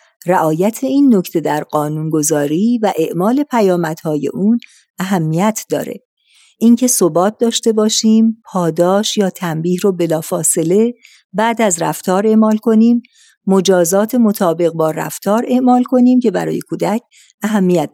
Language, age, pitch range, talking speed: Persian, 50-69, 170-220 Hz, 115 wpm